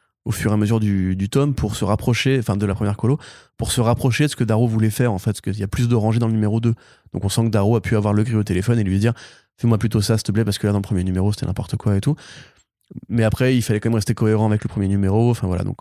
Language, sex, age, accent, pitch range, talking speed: French, male, 20-39, French, 100-120 Hz, 325 wpm